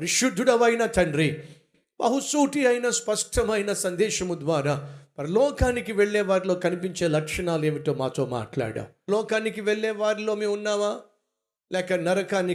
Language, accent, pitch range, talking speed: Telugu, native, 155-215 Hz, 55 wpm